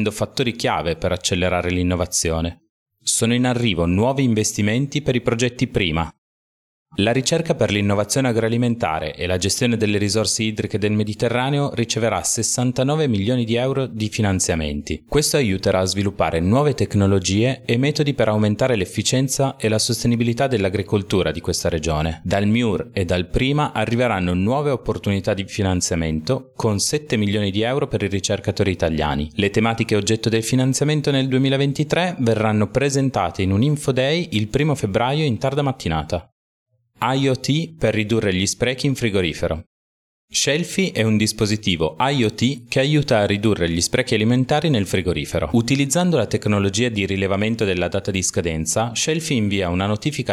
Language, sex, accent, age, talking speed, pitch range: Italian, male, native, 30-49, 150 wpm, 100-130 Hz